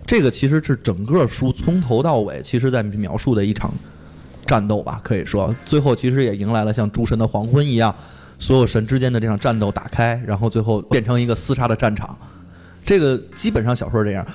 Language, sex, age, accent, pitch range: Chinese, male, 20-39, native, 110-140 Hz